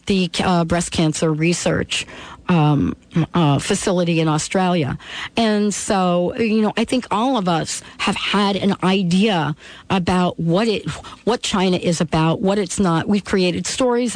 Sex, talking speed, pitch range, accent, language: female, 155 wpm, 170-215 Hz, American, English